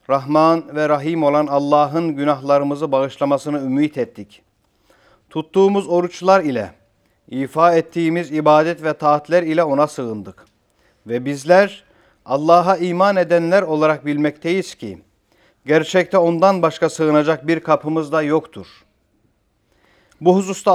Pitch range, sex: 150-185 Hz, male